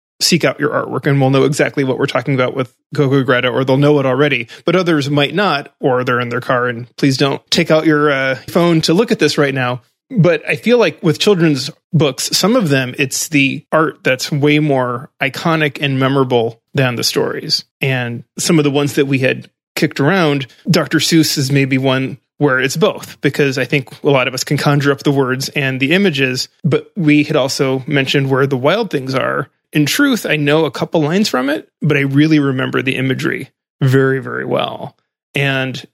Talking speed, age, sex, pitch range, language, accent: 210 wpm, 30-49, male, 130-150 Hz, English, American